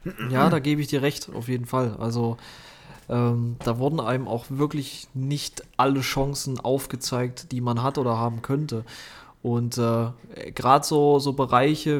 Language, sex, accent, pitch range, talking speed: German, male, German, 125-145 Hz, 160 wpm